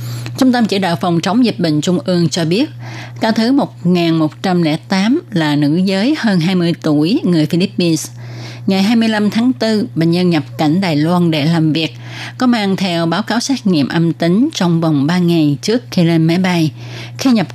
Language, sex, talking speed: Vietnamese, female, 190 wpm